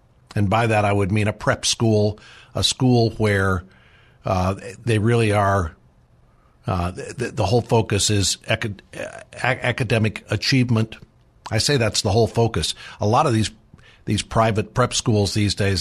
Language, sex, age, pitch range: English, male, 50-69, 95-115 Hz